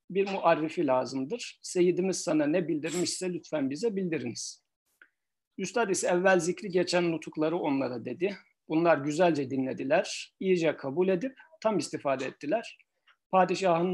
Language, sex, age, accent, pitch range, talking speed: Turkish, male, 50-69, native, 150-200 Hz, 120 wpm